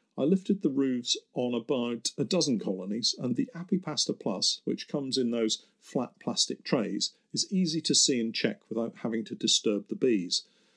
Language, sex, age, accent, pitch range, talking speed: English, male, 50-69, British, 115-170 Hz, 180 wpm